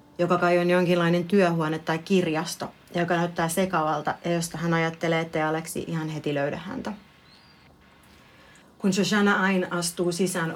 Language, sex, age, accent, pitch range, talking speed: Finnish, female, 30-49, native, 160-180 Hz, 140 wpm